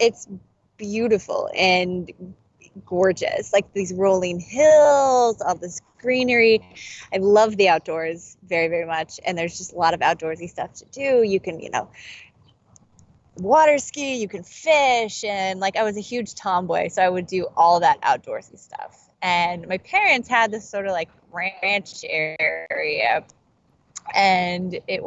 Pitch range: 180-240 Hz